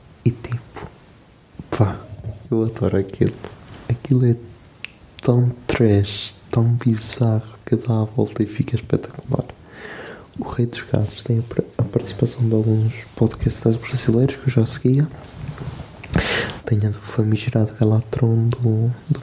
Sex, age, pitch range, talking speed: male, 20-39, 110-130 Hz, 125 wpm